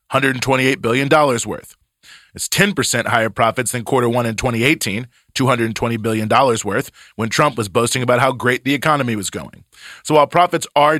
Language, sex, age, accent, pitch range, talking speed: English, male, 30-49, American, 115-145 Hz, 160 wpm